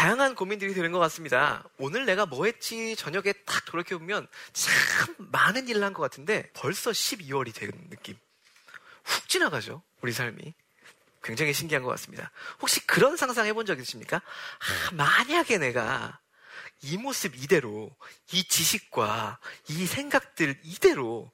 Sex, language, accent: male, Korean, native